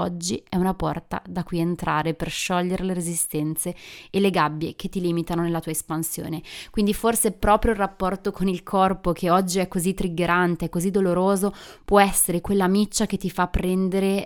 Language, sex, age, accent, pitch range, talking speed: Italian, female, 20-39, native, 175-195 Hz, 180 wpm